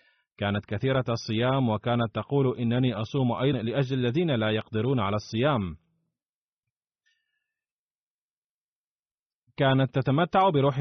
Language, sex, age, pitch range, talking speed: Arabic, male, 30-49, 115-140 Hz, 95 wpm